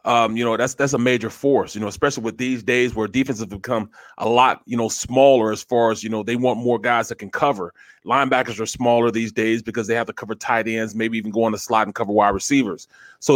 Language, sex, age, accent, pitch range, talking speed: English, male, 30-49, American, 115-140 Hz, 260 wpm